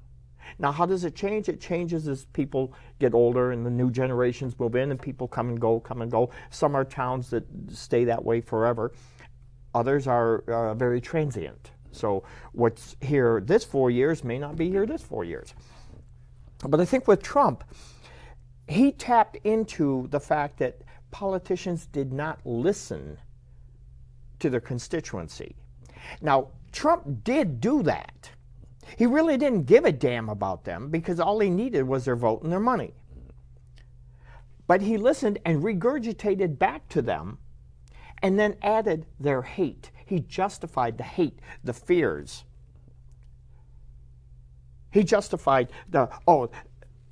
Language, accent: English, American